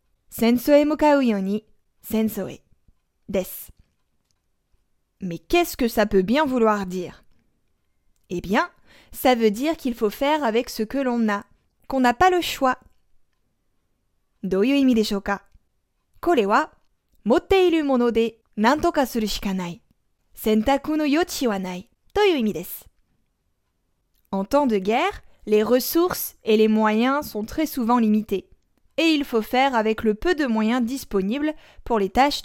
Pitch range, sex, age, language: 195-285 Hz, female, 20-39, Japanese